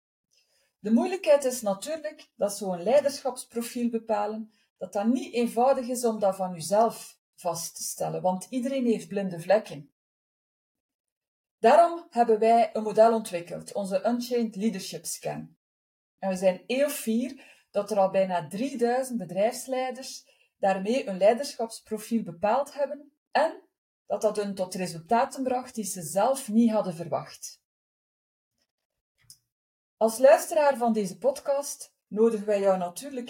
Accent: Dutch